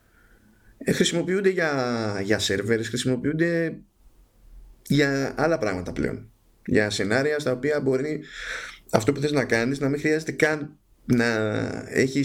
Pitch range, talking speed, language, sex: 110-140 Hz, 120 wpm, Greek, male